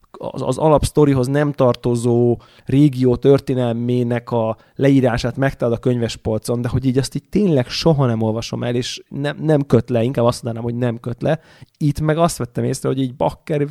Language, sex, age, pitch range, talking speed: Hungarian, male, 20-39, 120-145 Hz, 185 wpm